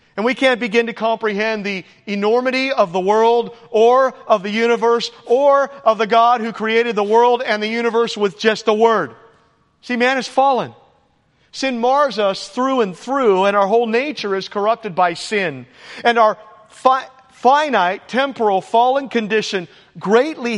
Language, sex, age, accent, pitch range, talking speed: English, male, 40-59, American, 210-260 Hz, 160 wpm